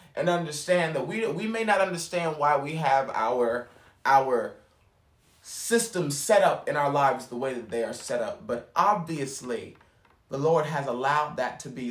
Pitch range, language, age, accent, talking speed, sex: 120-165 Hz, English, 30-49, American, 175 wpm, male